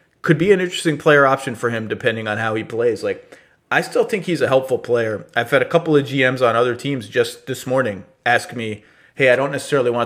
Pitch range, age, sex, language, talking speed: 120-160 Hz, 30-49, male, English, 240 wpm